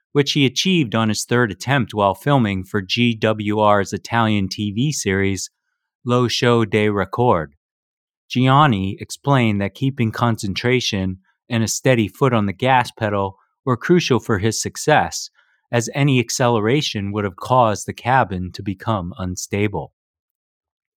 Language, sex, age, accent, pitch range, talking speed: English, male, 30-49, American, 105-125 Hz, 135 wpm